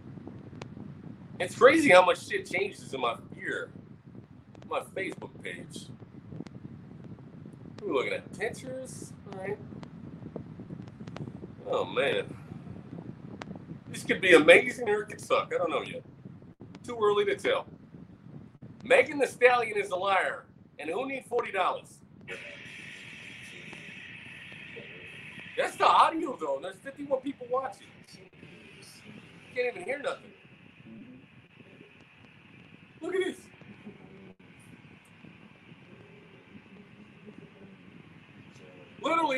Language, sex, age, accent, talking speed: English, male, 40-59, American, 95 wpm